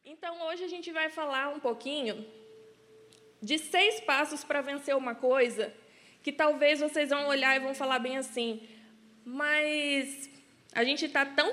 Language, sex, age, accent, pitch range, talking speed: Portuguese, female, 20-39, Brazilian, 225-285 Hz, 155 wpm